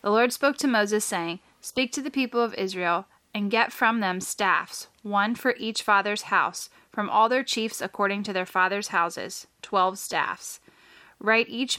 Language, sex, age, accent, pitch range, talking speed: English, female, 10-29, American, 190-225 Hz, 180 wpm